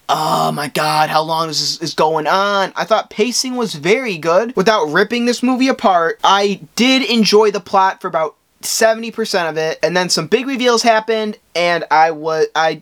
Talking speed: 185 wpm